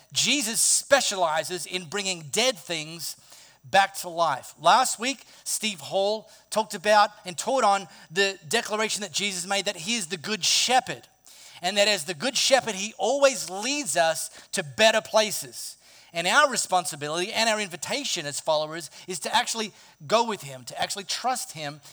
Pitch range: 165-225 Hz